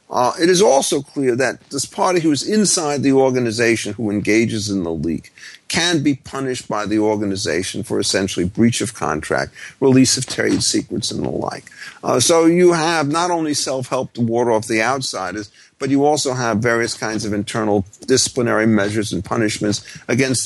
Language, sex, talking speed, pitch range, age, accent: English, male, 180 wpm, 110-140 Hz, 50-69, American